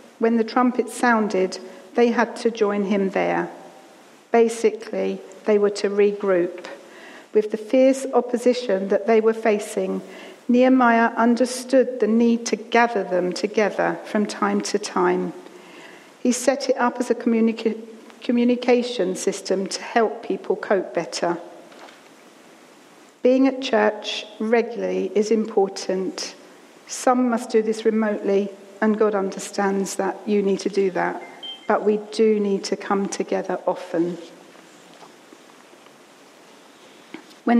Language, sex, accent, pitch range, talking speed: English, female, British, 195-235 Hz, 125 wpm